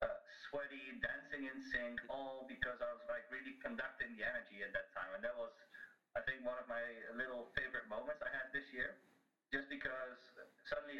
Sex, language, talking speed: male, English, 190 wpm